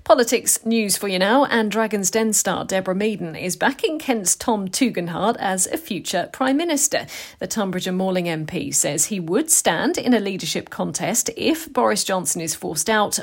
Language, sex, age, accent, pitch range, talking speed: English, female, 40-59, British, 175-220 Hz, 180 wpm